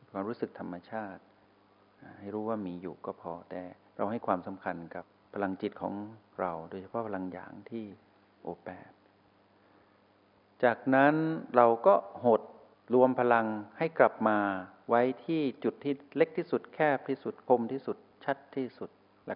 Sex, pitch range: male, 100-120 Hz